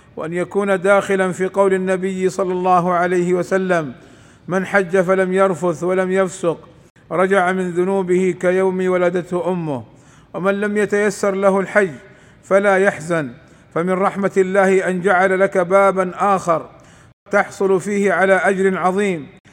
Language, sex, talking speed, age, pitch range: Arabic, male, 130 wpm, 50-69, 175-195 Hz